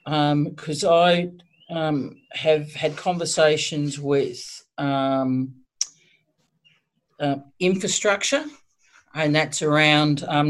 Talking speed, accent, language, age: 85 wpm, Australian, English, 50-69